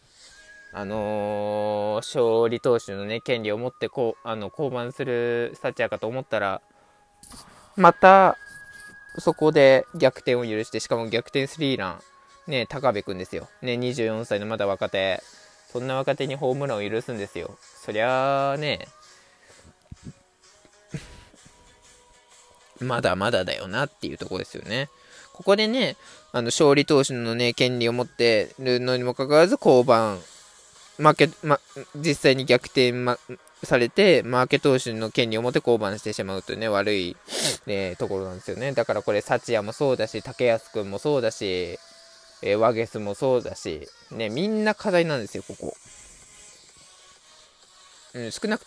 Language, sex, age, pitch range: Japanese, male, 20-39, 110-145 Hz